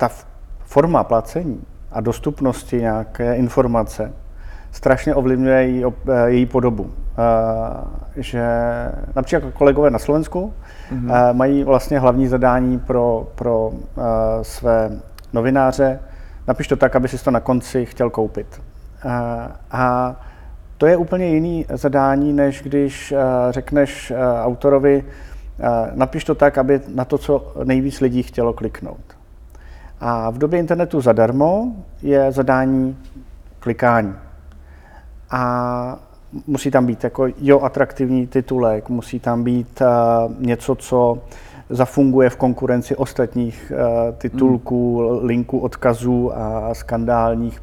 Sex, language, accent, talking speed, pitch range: male, Czech, native, 105 wpm, 115-135 Hz